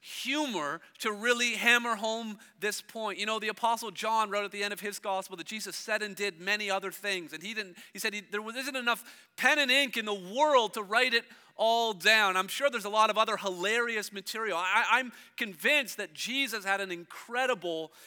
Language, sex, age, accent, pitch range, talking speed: English, male, 40-59, American, 210-270 Hz, 205 wpm